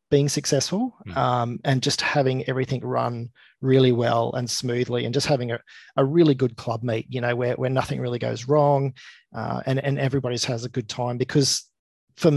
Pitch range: 120-135 Hz